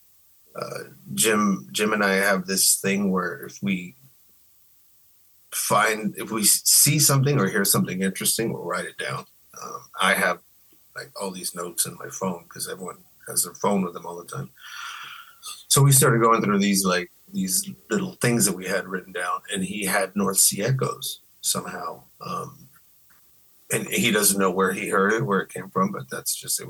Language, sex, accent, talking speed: Portuguese, male, American, 185 wpm